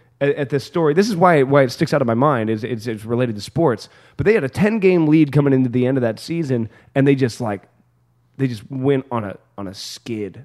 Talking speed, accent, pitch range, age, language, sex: 260 wpm, American, 115-140 Hz, 20-39, English, male